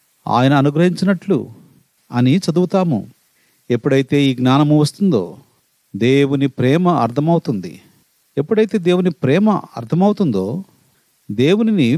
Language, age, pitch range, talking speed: Telugu, 40-59, 130-185 Hz, 80 wpm